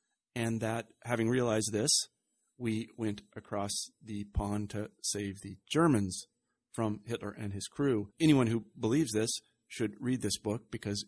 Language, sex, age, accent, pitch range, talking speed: English, male, 40-59, American, 105-125 Hz, 150 wpm